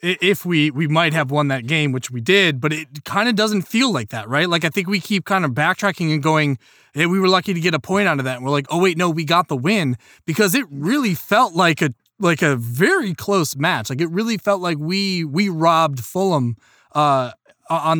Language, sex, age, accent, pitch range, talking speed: English, male, 20-39, American, 150-190 Hz, 245 wpm